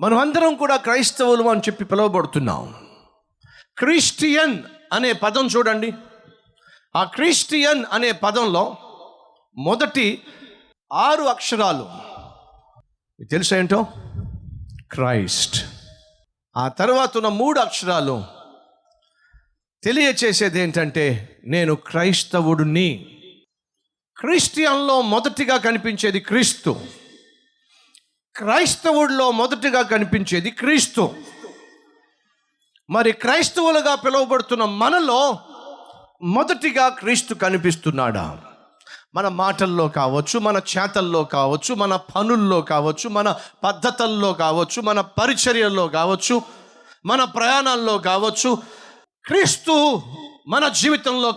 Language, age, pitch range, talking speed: Telugu, 50-69, 185-270 Hz, 75 wpm